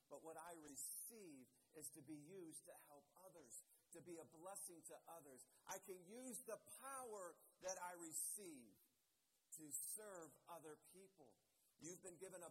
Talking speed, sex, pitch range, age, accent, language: 160 wpm, male, 160-225 Hz, 50-69, American, English